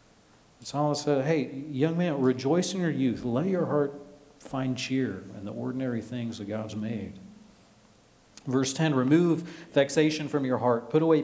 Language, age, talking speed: English, 40-59, 160 wpm